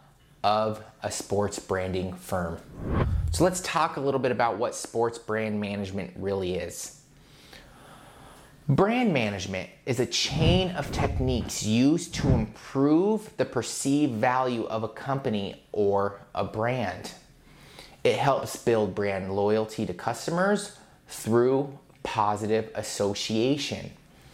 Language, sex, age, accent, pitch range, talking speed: English, male, 30-49, American, 100-140 Hz, 115 wpm